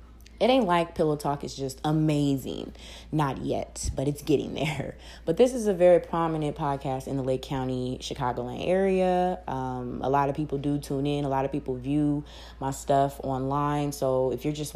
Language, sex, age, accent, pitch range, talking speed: English, female, 20-39, American, 135-165 Hz, 190 wpm